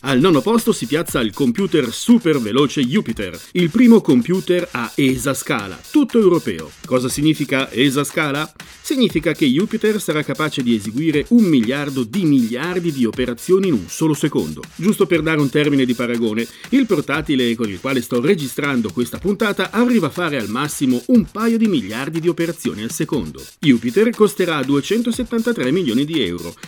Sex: male